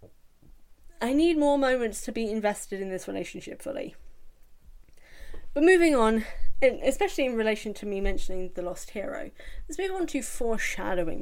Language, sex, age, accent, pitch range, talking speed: English, female, 10-29, British, 185-245 Hz, 150 wpm